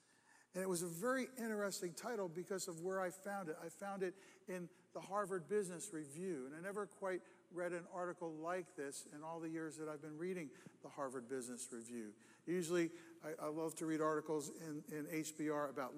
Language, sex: Japanese, male